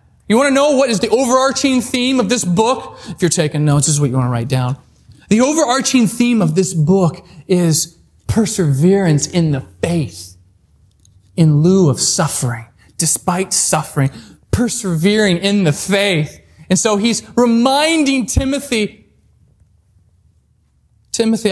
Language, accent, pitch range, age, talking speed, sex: English, American, 140-230 Hz, 20-39, 140 wpm, male